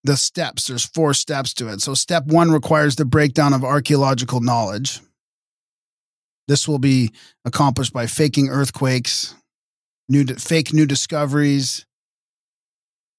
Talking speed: 125 wpm